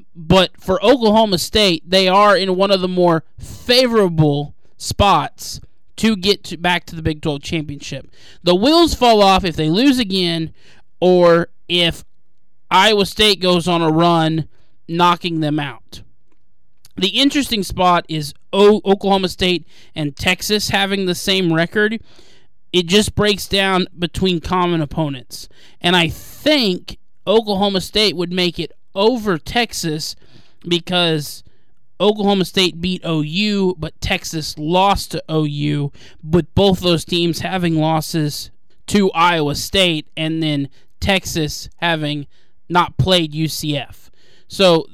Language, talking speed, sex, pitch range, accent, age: English, 130 wpm, male, 155-195 Hz, American, 20-39